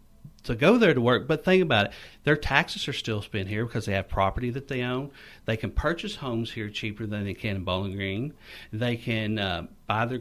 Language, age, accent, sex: English, 50-69, American, male